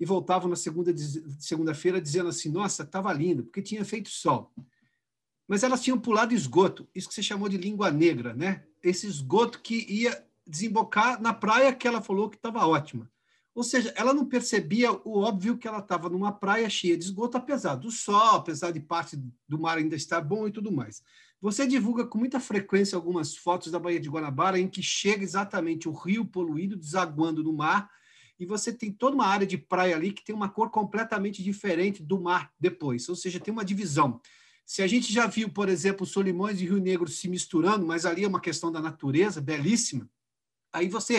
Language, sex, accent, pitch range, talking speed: Portuguese, male, Brazilian, 170-220 Hz, 200 wpm